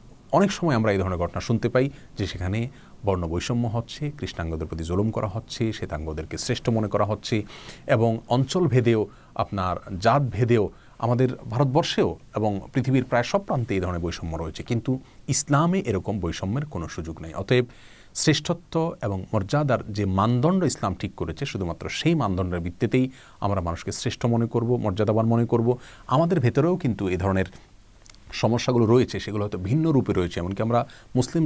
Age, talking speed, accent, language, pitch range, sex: 40-59, 130 wpm, native, Bengali, 95-130 Hz, male